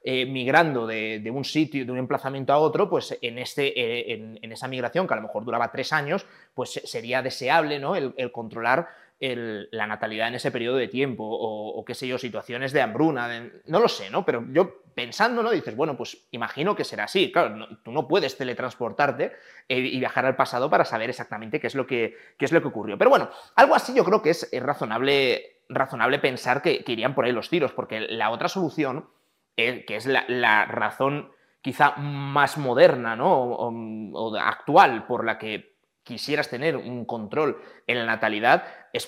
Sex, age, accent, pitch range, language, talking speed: male, 20-39, Spanish, 115-140 Hz, Spanish, 190 wpm